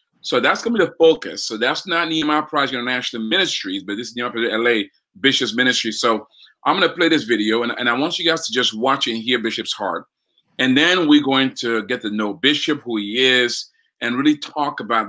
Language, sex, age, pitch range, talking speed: English, male, 30-49, 110-130 Hz, 225 wpm